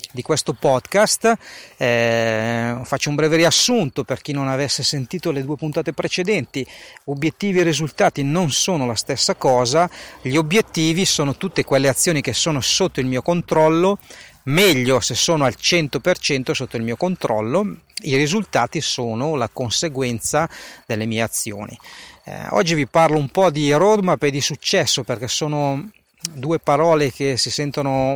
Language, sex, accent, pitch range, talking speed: Italian, male, native, 125-165 Hz, 155 wpm